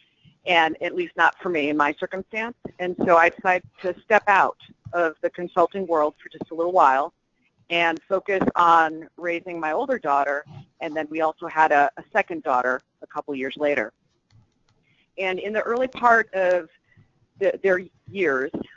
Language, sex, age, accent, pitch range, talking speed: English, female, 50-69, American, 155-190 Hz, 170 wpm